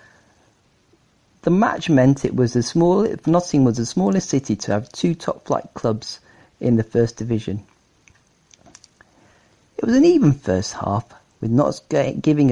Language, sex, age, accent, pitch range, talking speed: English, male, 40-59, British, 110-140 Hz, 155 wpm